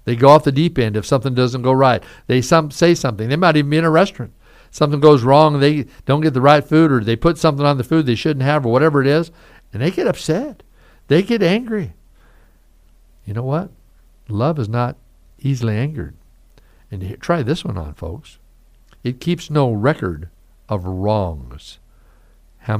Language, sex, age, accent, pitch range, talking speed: English, male, 60-79, American, 90-135 Hz, 190 wpm